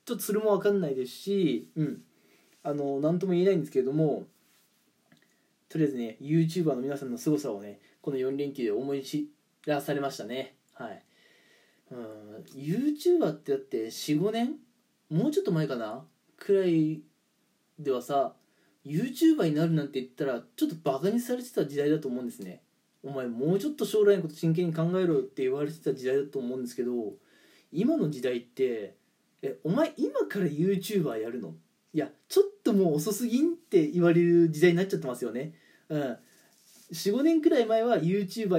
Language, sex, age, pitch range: Japanese, male, 20-39, 140-210 Hz